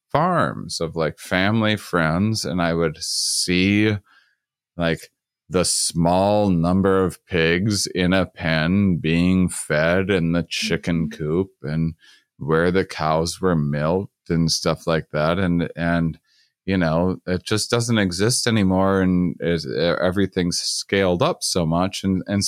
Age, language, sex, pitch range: 30-49, English, male, 80-100 Hz